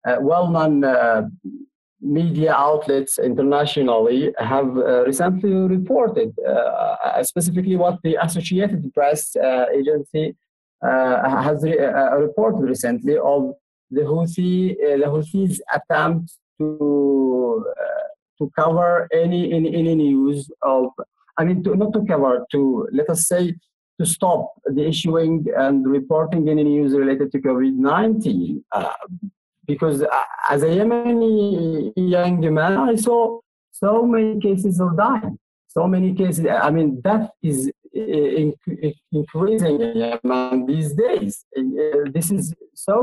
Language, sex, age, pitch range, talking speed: English, male, 50-69, 145-210 Hz, 125 wpm